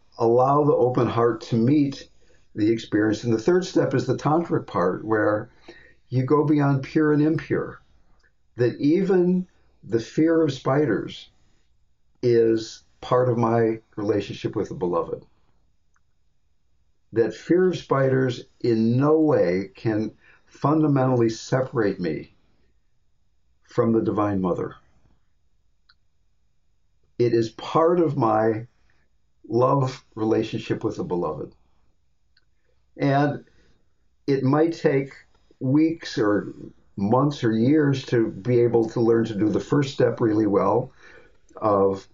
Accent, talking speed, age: American, 120 wpm, 50-69